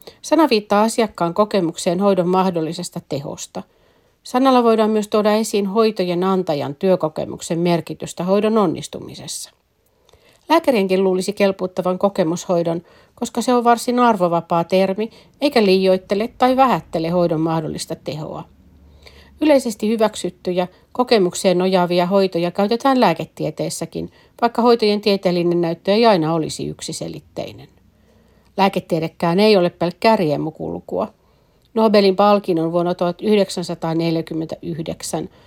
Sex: female